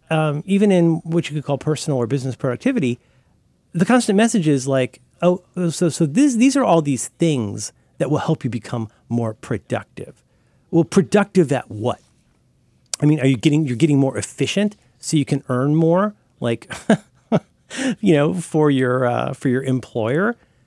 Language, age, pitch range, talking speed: English, 40-59, 125-170 Hz, 170 wpm